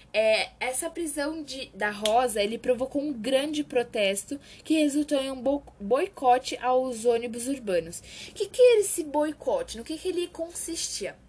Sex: female